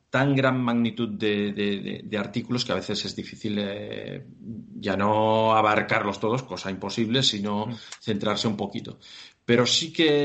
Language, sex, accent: Spanish, male, Spanish